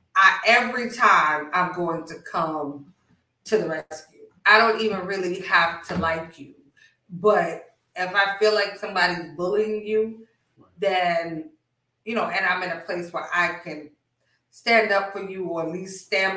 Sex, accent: female, American